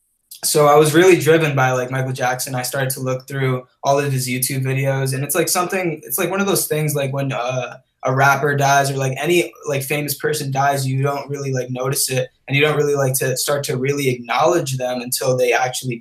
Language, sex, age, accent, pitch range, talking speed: English, male, 20-39, American, 130-150 Hz, 230 wpm